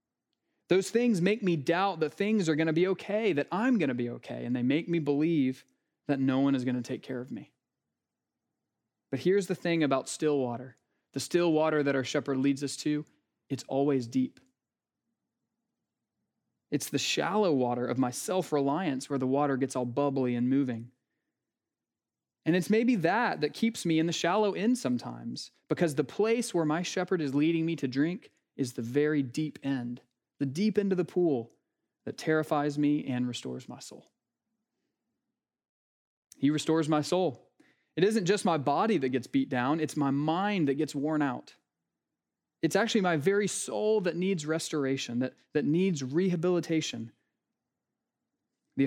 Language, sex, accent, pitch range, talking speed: English, male, American, 135-175 Hz, 175 wpm